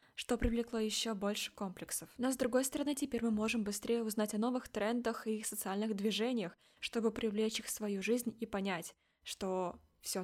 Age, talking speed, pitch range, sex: 20-39, 180 wpm, 210-250 Hz, female